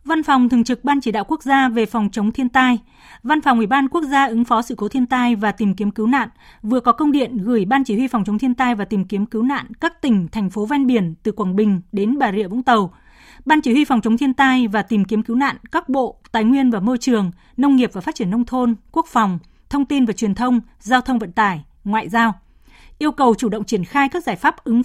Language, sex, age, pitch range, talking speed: Vietnamese, female, 20-39, 215-275 Hz, 270 wpm